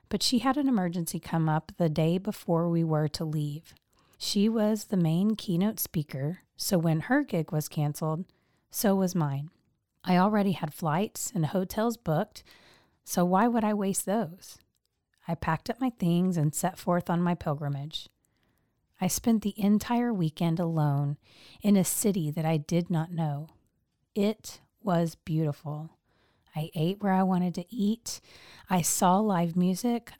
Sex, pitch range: female, 160-210 Hz